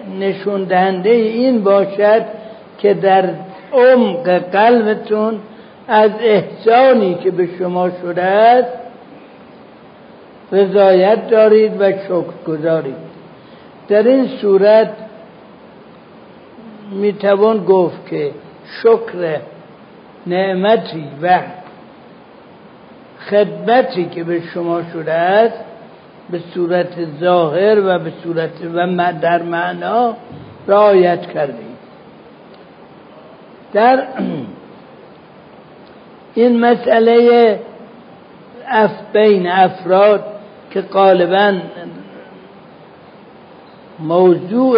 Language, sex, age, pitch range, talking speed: Persian, male, 60-79, 180-220 Hz, 70 wpm